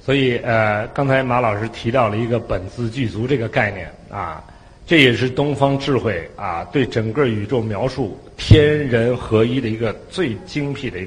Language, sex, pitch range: Chinese, male, 105-145 Hz